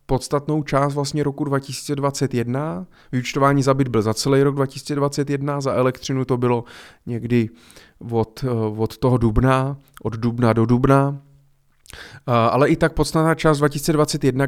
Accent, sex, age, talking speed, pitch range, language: native, male, 30-49, 135 wpm, 120-150 Hz, Czech